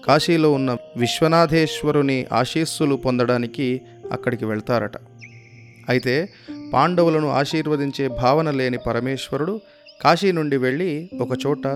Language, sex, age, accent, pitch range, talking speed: Telugu, male, 30-49, native, 125-155 Hz, 85 wpm